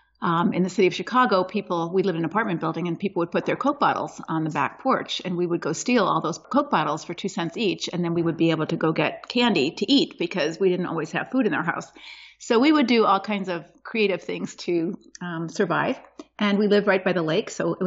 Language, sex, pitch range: English, female, 180-225 Hz